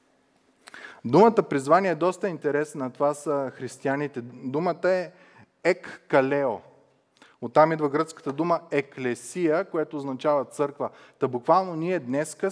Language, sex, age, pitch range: Bulgarian, male, 30-49, 120-160 Hz